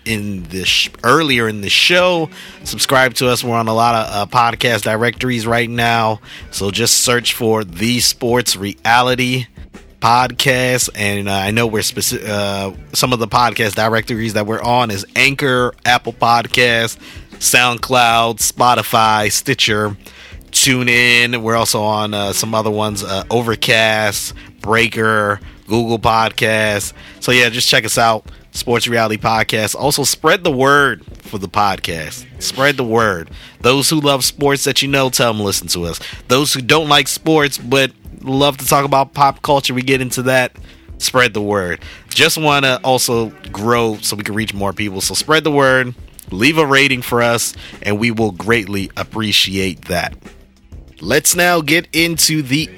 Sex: male